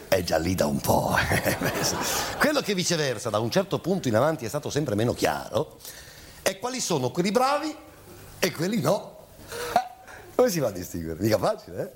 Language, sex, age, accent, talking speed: Italian, male, 50-69, native, 185 wpm